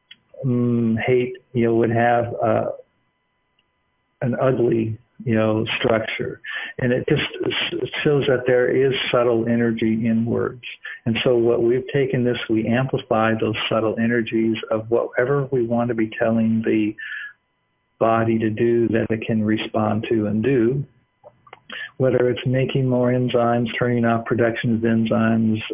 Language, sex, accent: English, male, American